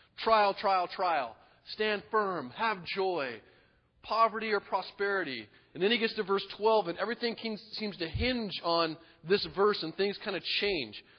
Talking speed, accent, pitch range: 160 wpm, American, 145-200 Hz